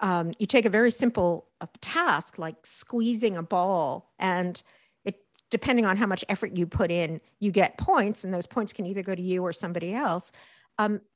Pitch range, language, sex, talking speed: 175-225 Hz, English, female, 200 wpm